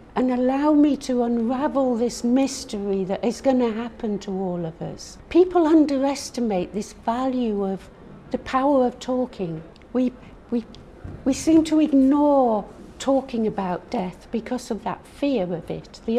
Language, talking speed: English, 150 wpm